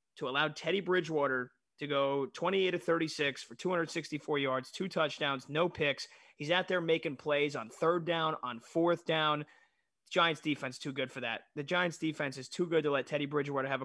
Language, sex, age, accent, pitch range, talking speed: English, male, 30-49, American, 140-175 Hz, 190 wpm